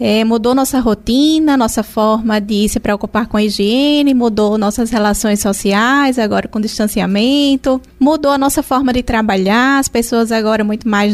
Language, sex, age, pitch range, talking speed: Portuguese, female, 20-39, 230-285 Hz, 155 wpm